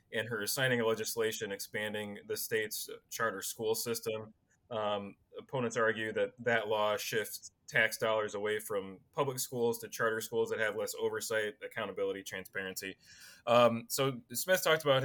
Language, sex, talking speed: English, male, 150 wpm